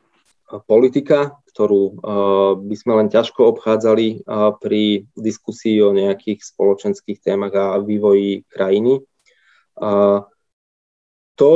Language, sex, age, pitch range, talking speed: Slovak, male, 20-39, 100-115 Hz, 90 wpm